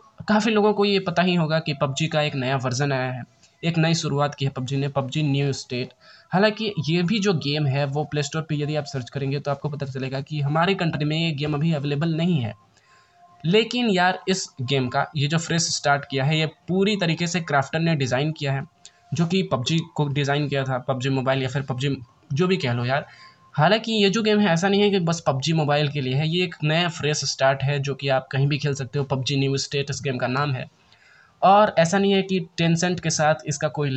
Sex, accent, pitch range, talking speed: male, native, 140-175 Hz, 240 wpm